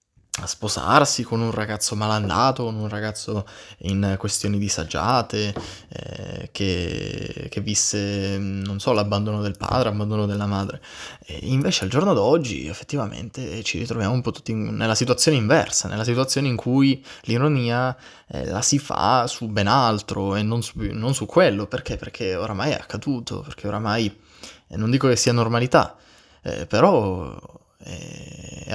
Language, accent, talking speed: Italian, native, 150 wpm